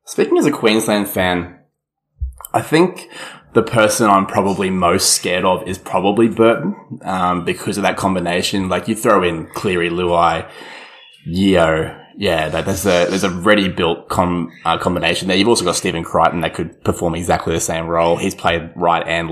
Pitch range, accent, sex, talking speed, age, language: 85-110 Hz, Australian, male, 175 wpm, 20-39, English